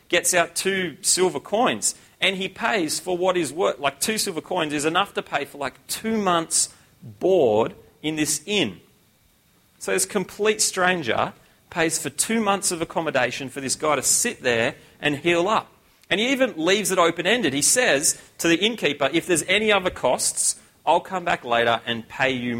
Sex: male